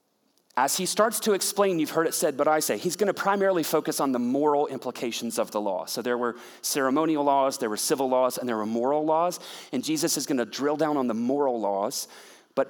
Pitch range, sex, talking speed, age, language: 140-195 Hz, male, 225 wpm, 30-49, English